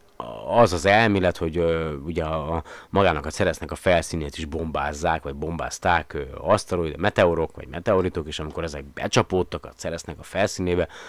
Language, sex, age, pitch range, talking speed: Hungarian, male, 30-49, 75-90 Hz, 155 wpm